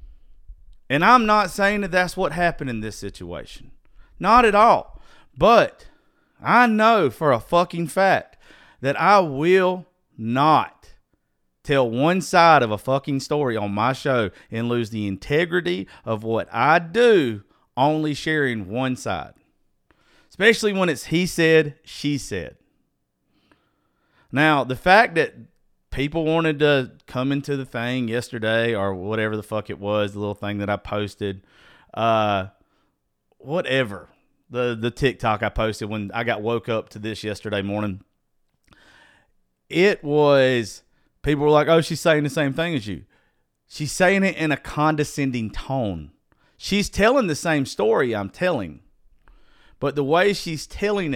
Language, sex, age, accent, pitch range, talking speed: English, male, 40-59, American, 105-160 Hz, 150 wpm